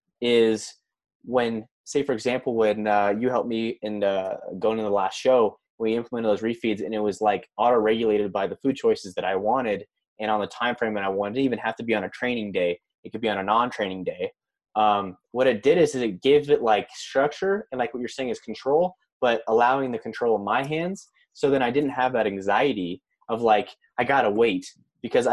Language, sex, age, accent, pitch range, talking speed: English, male, 20-39, American, 105-140 Hz, 225 wpm